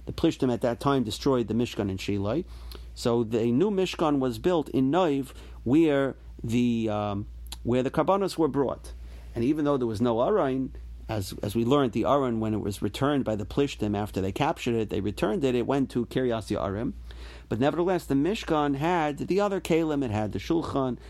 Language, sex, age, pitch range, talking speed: English, male, 40-59, 100-140 Hz, 195 wpm